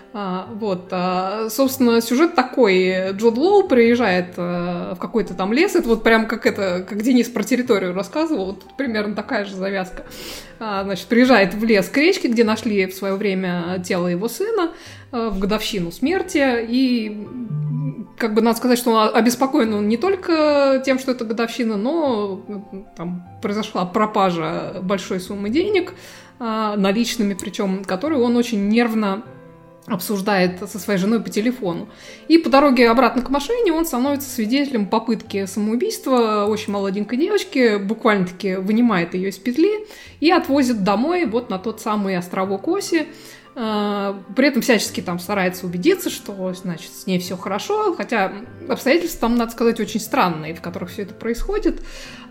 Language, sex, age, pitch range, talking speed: Russian, female, 20-39, 195-255 Hz, 140 wpm